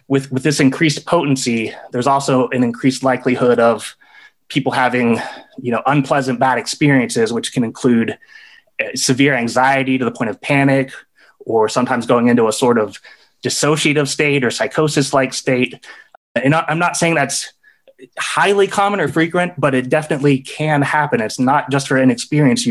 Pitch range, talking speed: 125-145 Hz, 155 wpm